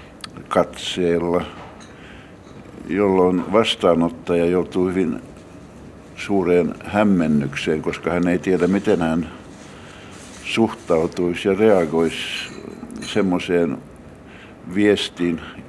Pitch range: 80-95 Hz